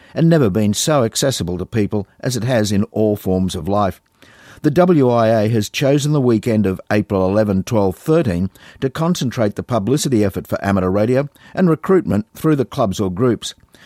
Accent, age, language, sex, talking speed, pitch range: Australian, 50-69, English, male, 180 wpm, 100-135 Hz